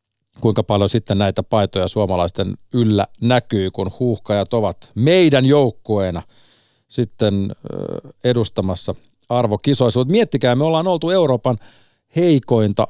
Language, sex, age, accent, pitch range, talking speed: Finnish, male, 40-59, native, 100-130 Hz, 100 wpm